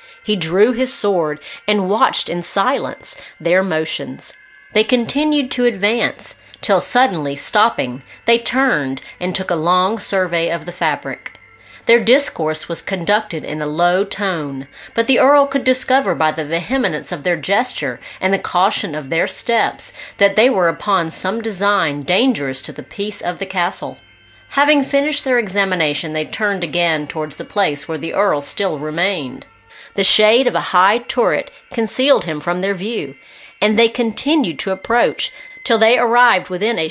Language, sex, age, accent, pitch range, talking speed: English, female, 40-59, American, 170-235 Hz, 165 wpm